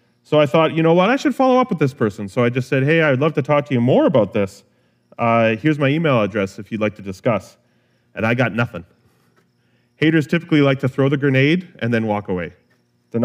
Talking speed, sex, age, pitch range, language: 240 wpm, male, 30-49, 100-140 Hz, English